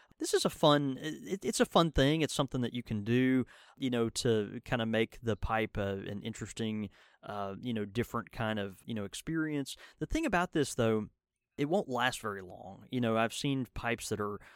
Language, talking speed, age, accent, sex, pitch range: English, 215 wpm, 20-39, American, male, 105-125 Hz